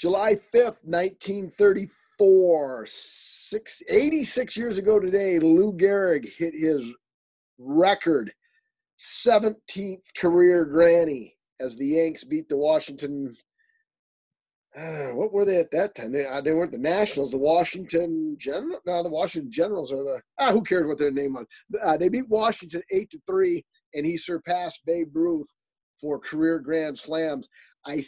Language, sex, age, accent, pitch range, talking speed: English, male, 40-59, American, 145-205 Hz, 145 wpm